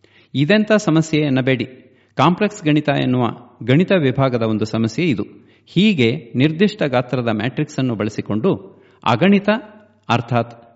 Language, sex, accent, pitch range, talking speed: English, male, Indian, 125-175 Hz, 105 wpm